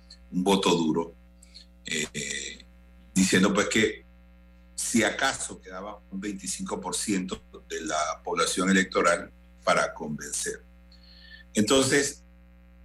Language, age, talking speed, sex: Spanish, 60-79, 90 wpm, male